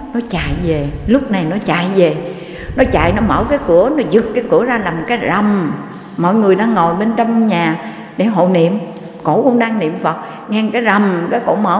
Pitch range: 190-250 Hz